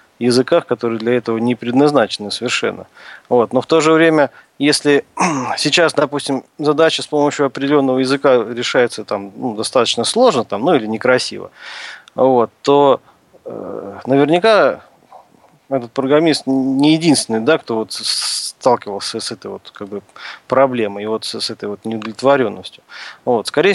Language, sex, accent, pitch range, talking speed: Russian, male, native, 115-145 Hz, 110 wpm